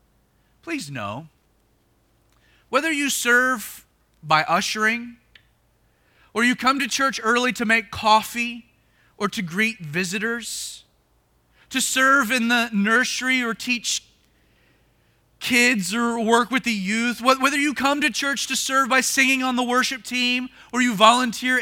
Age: 30-49